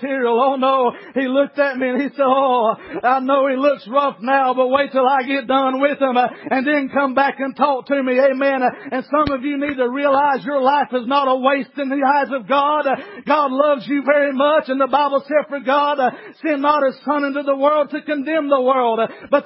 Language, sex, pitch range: English, male, 210-275 Hz